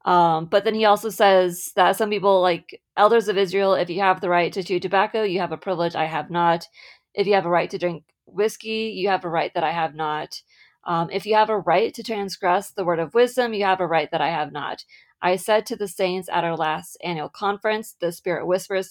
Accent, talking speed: American, 245 wpm